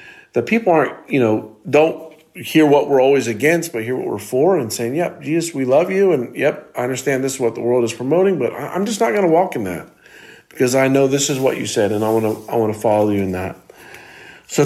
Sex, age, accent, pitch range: male, 40-59, American, 115-150 Hz